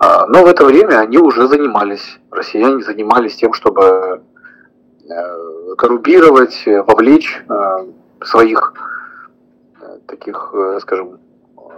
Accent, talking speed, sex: native, 80 wpm, male